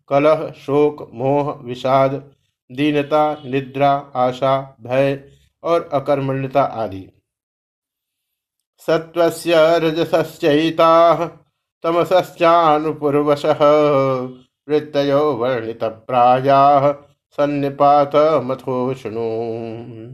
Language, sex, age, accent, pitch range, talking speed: Hindi, male, 50-69, native, 130-160 Hz, 55 wpm